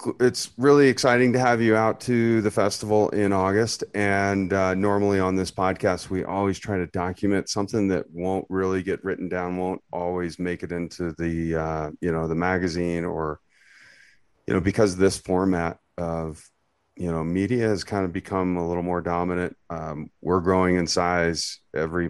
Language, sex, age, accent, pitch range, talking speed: English, male, 30-49, American, 85-100 Hz, 180 wpm